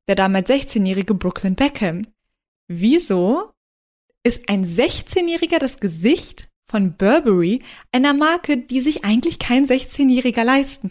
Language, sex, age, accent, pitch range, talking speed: German, female, 20-39, German, 190-255 Hz, 115 wpm